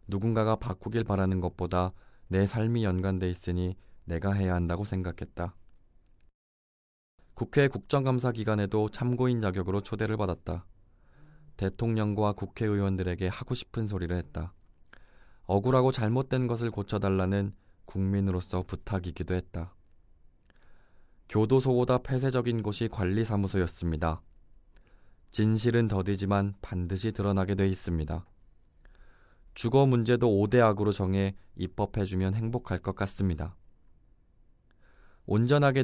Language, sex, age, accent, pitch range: Korean, male, 20-39, native, 90-110 Hz